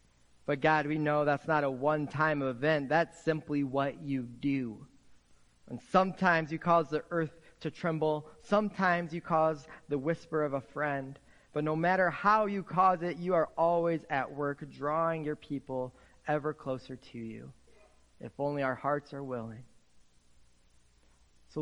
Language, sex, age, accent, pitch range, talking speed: English, male, 30-49, American, 120-165 Hz, 155 wpm